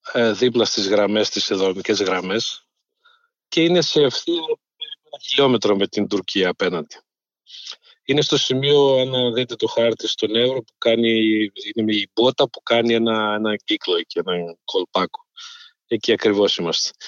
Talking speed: 140 wpm